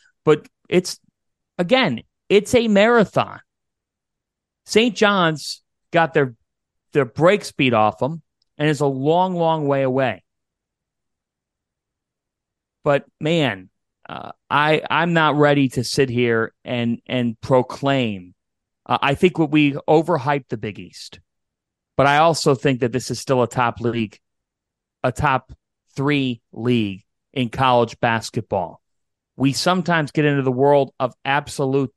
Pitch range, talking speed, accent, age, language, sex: 120-150 Hz, 130 wpm, American, 30-49, English, male